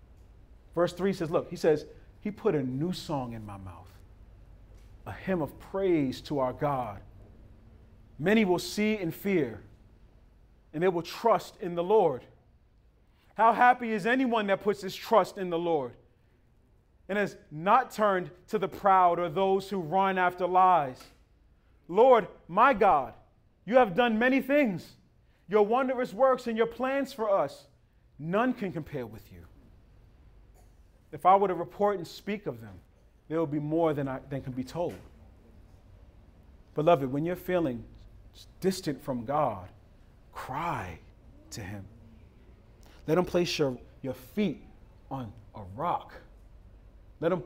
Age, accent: 40-59, American